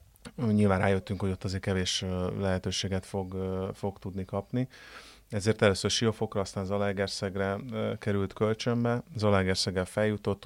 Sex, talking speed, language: male, 115 wpm, Hungarian